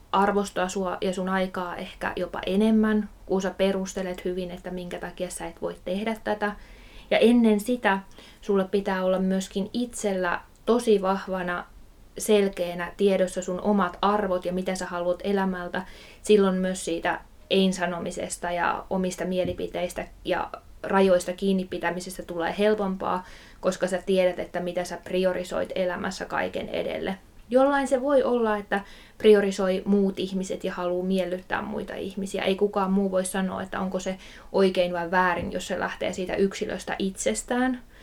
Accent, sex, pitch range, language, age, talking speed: native, female, 180-200 Hz, Finnish, 20-39, 145 wpm